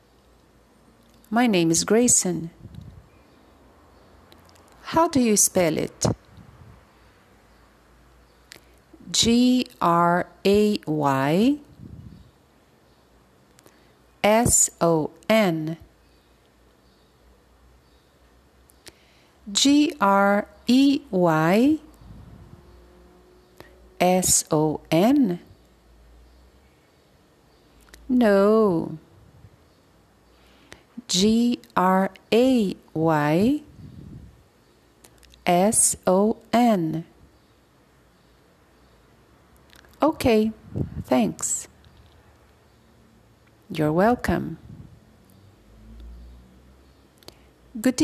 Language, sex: English, female